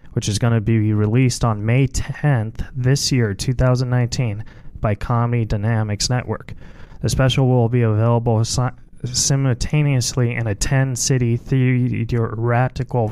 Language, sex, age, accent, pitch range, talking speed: English, male, 20-39, American, 105-125 Hz, 120 wpm